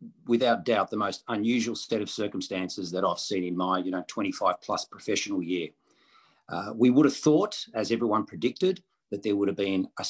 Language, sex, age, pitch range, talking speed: English, male, 40-59, 105-150 Hz, 195 wpm